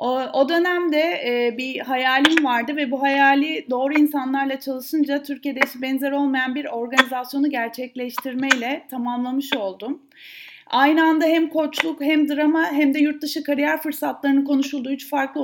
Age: 30-49